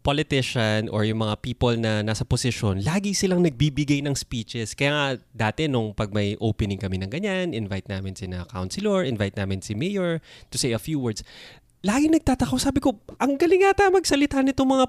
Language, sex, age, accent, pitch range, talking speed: Filipino, male, 20-39, native, 110-165 Hz, 190 wpm